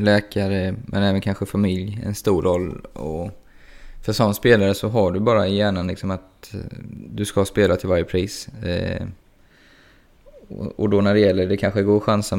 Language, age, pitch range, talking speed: Swedish, 20-39, 95-105 Hz, 160 wpm